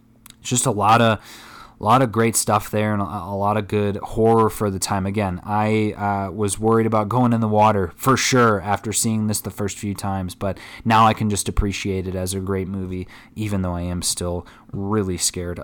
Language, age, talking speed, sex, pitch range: English, 20-39, 215 wpm, male, 105-125 Hz